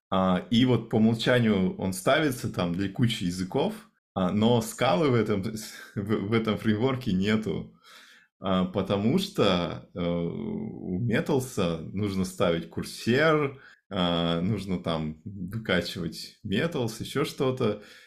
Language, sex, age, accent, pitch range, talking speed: Russian, male, 20-39, native, 90-115 Hz, 100 wpm